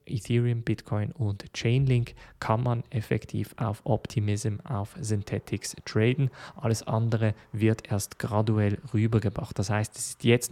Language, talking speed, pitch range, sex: German, 130 wpm, 110-125 Hz, male